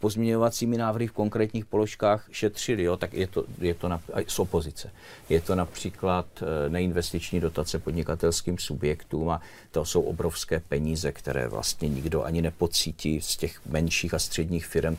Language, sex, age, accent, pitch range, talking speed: Czech, male, 50-69, native, 80-100 Hz, 140 wpm